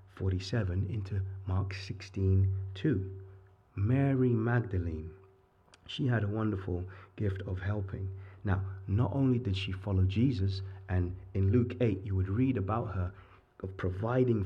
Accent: British